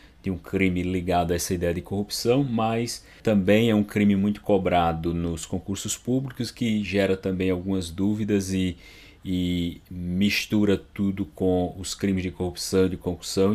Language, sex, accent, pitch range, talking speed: Portuguese, male, Brazilian, 90-110 Hz, 155 wpm